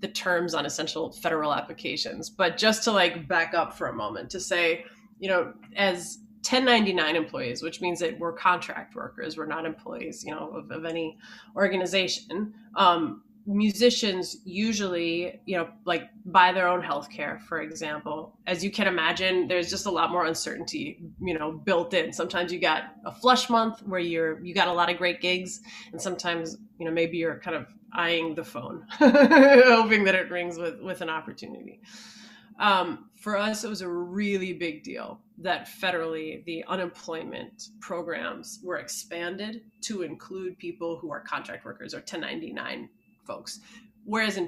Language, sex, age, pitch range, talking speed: English, female, 20-39, 170-215 Hz, 170 wpm